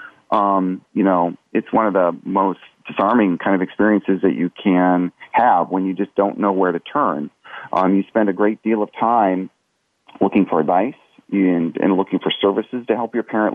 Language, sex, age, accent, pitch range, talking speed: English, male, 40-59, American, 90-100 Hz, 195 wpm